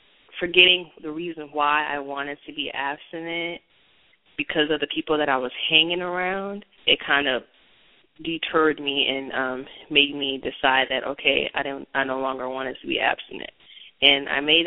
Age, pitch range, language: 20-39, 135-155 Hz, English